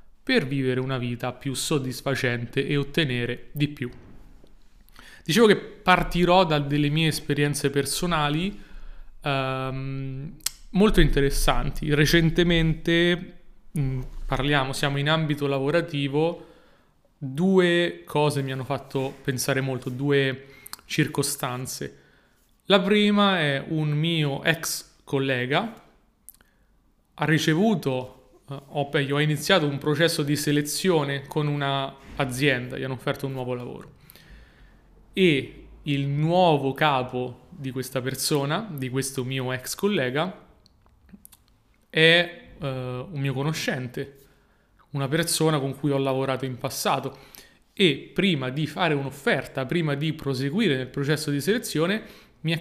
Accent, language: native, Italian